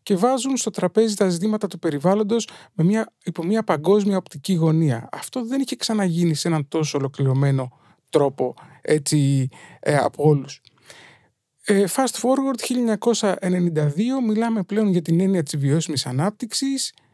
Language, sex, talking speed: Greek, male, 140 wpm